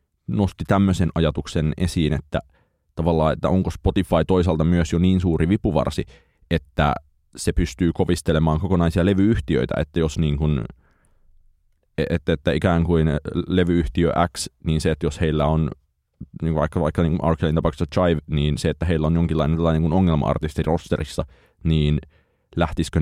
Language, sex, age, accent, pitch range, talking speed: Finnish, male, 20-39, native, 75-85 Hz, 145 wpm